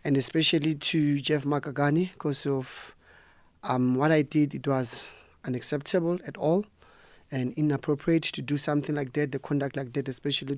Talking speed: 160 wpm